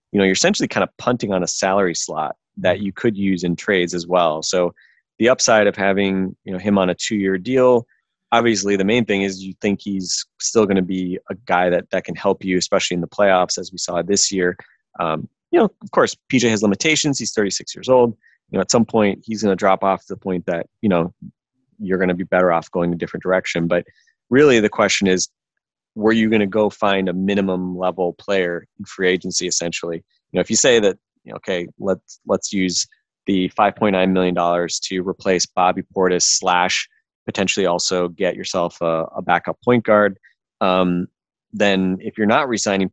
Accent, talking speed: American, 215 wpm